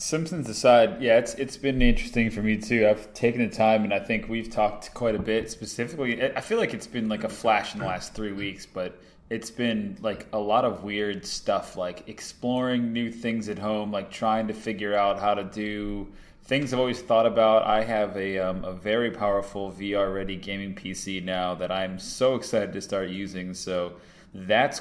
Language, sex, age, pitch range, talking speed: English, male, 20-39, 95-110 Hz, 205 wpm